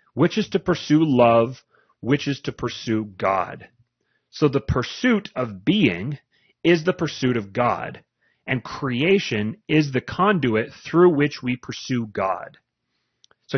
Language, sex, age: English, male, 30-49